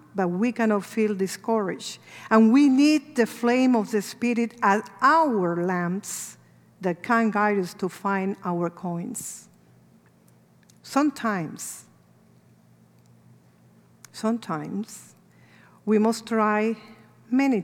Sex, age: female, 50-69